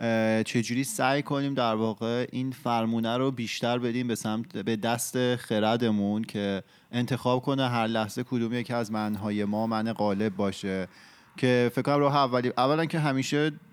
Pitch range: 110-130 Hz